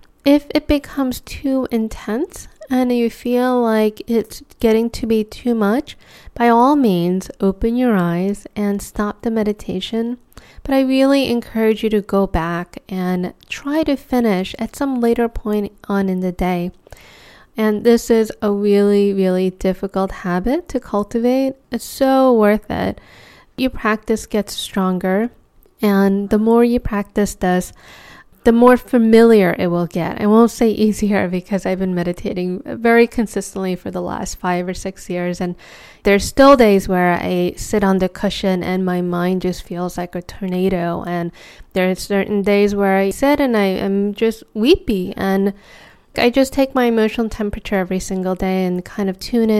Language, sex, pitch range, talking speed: English, female, 185-235 Hz, 165 wpm